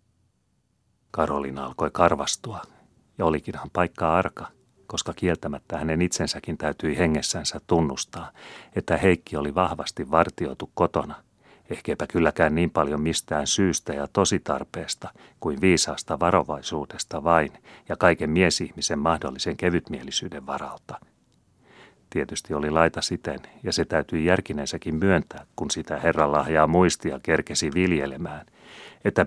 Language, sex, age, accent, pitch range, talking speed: Finnish, male, 40-59, native, 75-90 Hz, 115 wpm